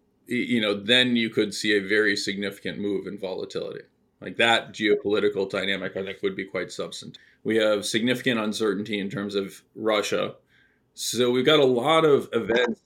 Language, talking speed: English, 175 wpm